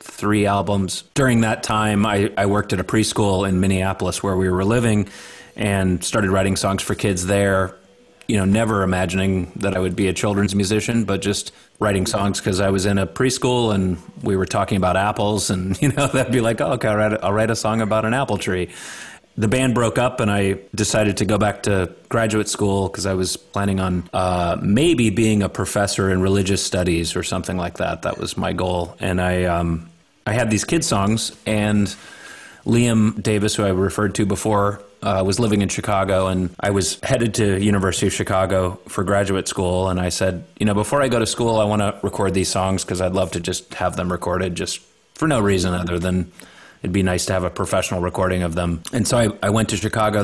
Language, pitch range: English, 95-105 Hz